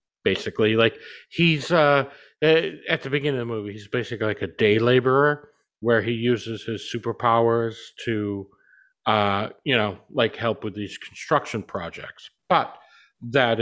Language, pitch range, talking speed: English, 105-125 Hz, 145 wpm